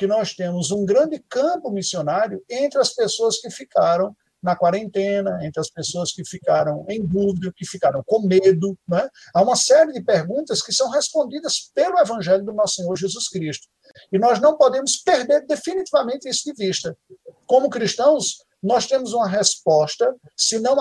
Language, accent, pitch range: Portuguese, Brazilian, 170-235 Hz